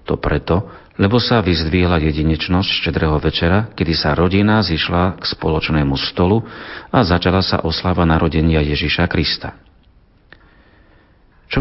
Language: Slovak